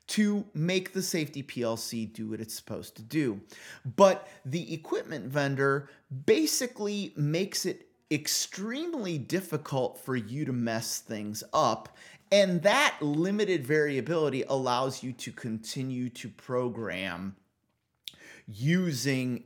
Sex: male